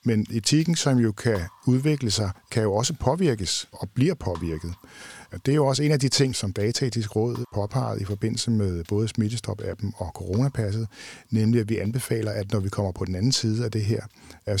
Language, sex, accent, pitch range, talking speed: Danish, male, native, 100-125 Hz, 200 wpm